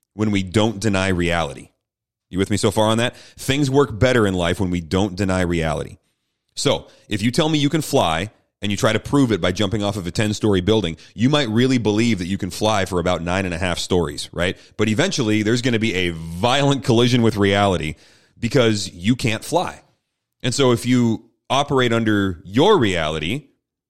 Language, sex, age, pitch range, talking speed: English, male, 30-49, 95-120 Hz, 205 wpm